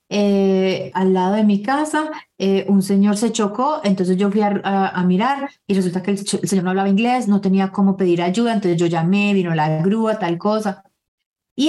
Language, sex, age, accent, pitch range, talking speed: Spanish, female, 30-49, Colombian, 180-210 Hz, 215 wpm